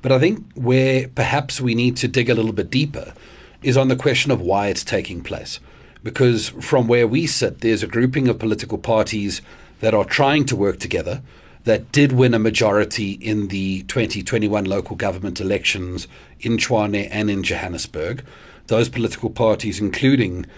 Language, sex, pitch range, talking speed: English, male, 105-125 Hz, 170 wpm